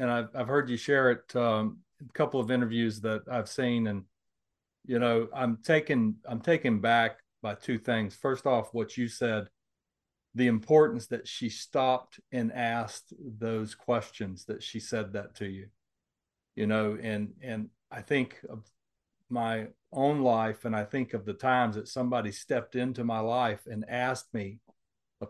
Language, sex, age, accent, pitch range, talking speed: English, male, 40-59, American, 110-130 Hz, 170 wpm